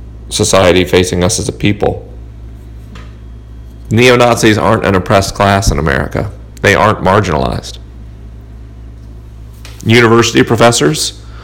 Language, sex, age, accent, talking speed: English, male, 40-59, American, 95 wpm